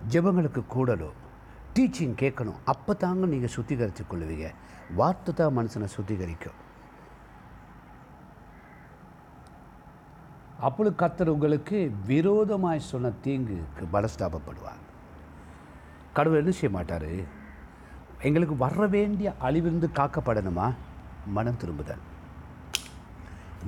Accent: native